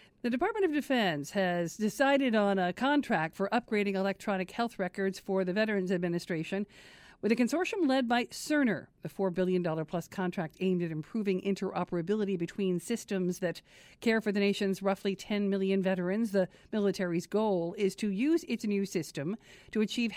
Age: 50-69